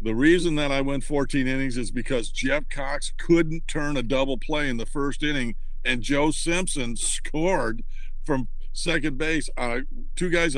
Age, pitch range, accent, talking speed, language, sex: 50-69, 115-155 Hz, American, 170 wpm, English, male